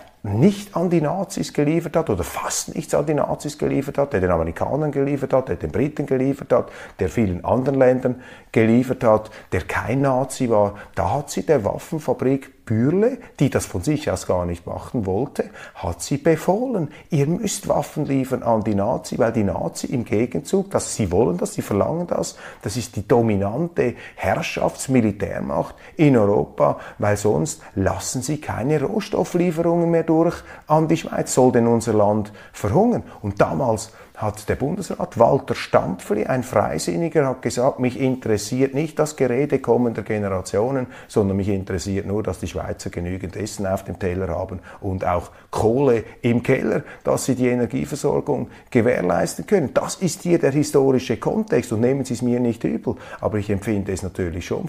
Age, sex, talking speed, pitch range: 30-49, male, 170 wpm, 100-145 Hz